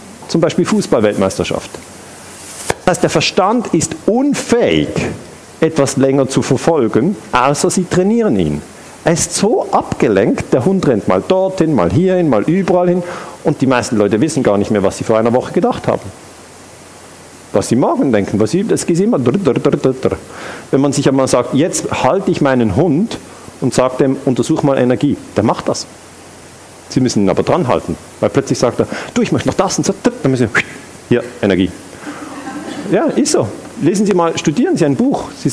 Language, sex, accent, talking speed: German, male, German, 180 wpm